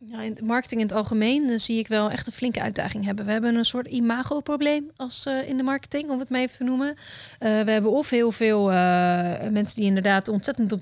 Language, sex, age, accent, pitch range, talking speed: Dutch, female, 30-49, Dutch, 200-250 Hz, 235 wpm